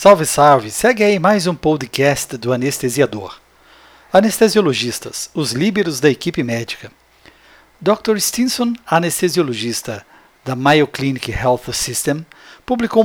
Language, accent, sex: Portuguese, Brazilian, male